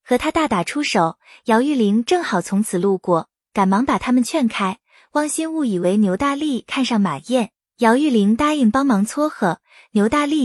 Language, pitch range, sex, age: Chinese, 205-285 Hz, female, 20-39